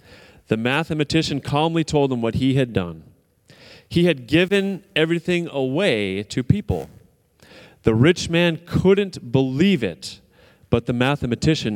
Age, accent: 30-49, American